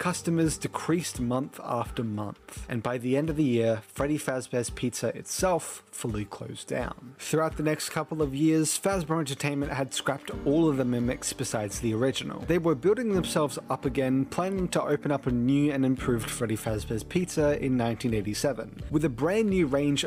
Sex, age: male, 30-49